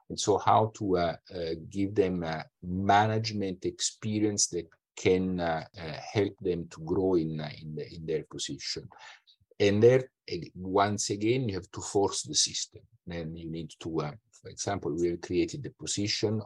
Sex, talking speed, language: male, 170 wpm, English